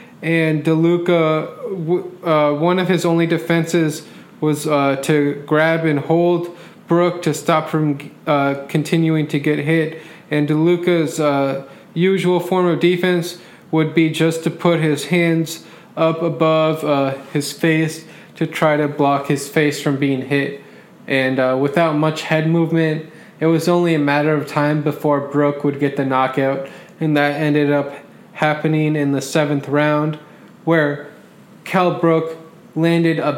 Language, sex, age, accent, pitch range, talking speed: English, male, 20-39, American, 145-170 Hz, 150 wpm